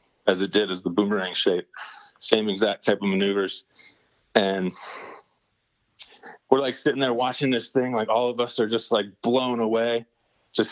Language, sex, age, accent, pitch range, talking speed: English, male, 30-49, American, 105-125 Hz, 170 wpm